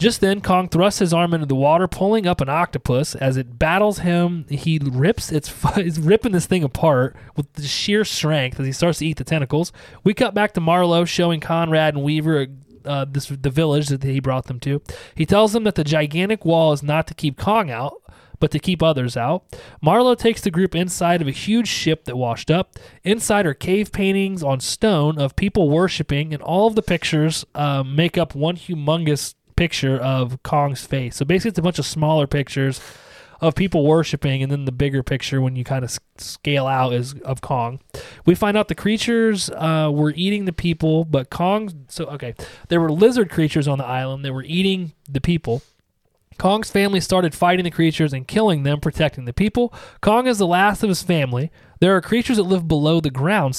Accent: American